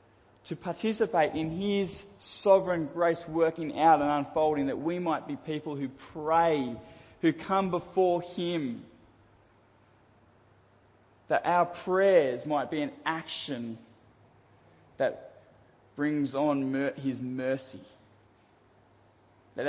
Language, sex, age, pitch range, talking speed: English, male, 20-39, 115-175 Hz, 105 wpm